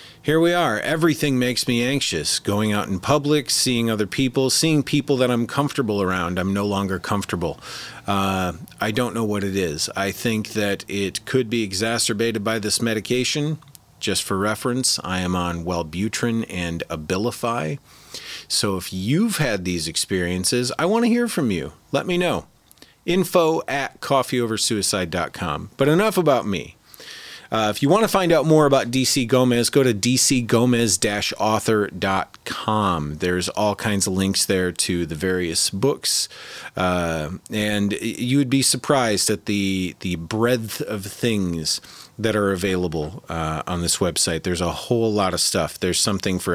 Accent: American